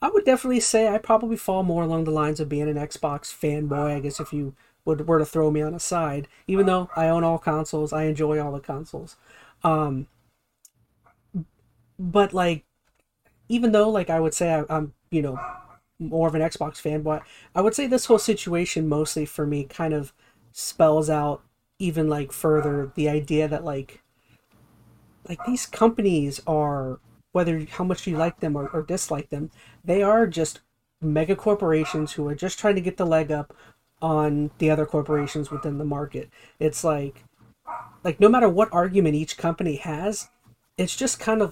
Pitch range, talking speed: 150-180 Hz, 180 wpm